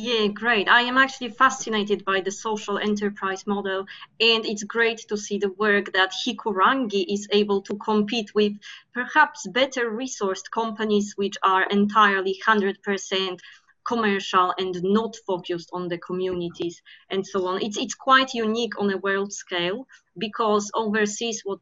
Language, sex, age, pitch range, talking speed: English, female, 20-39, 195-225 Hz, 150 wpm